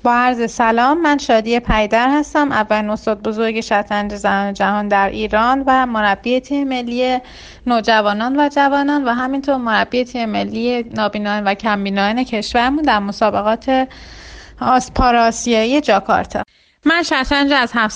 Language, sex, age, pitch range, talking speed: Persian, female, 30-49, 205-250 Hz, 125 wpm